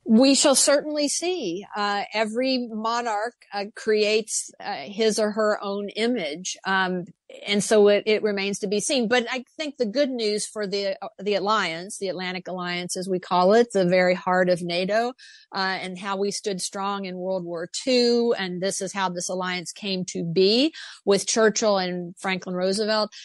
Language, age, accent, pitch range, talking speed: English, 50-69, American, 185-215 Hz, 180 wpm